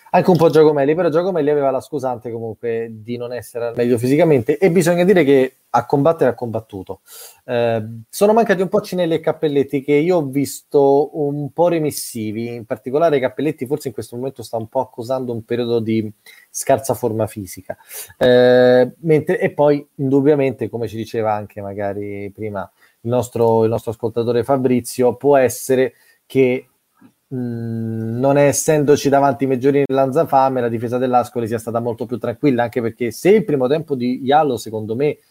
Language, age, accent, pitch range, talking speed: Italian, 20-39, native, 115-140 Hz, 170 wpm